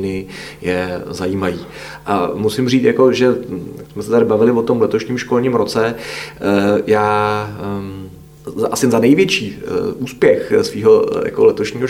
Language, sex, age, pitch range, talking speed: Czech, male, 30-49, 110-135 Hz, 120 wpm